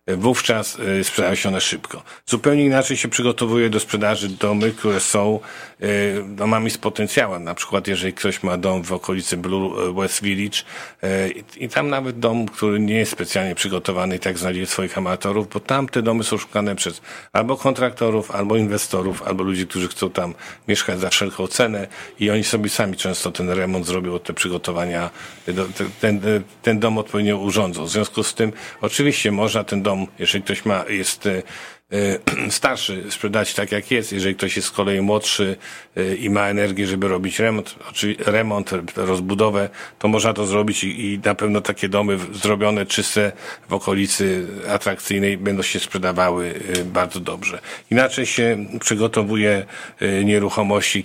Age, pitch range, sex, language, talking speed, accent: 50-69, 95-110 Hz, male, Polish, 150 wpm, native